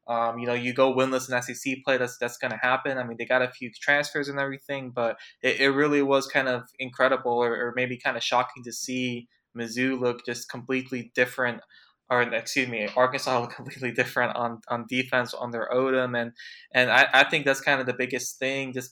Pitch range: 120-135 Hz